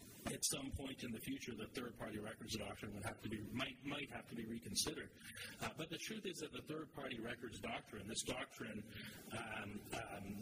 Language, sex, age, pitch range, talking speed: English, male, 40-59, 105-125 Hz, 190 wpm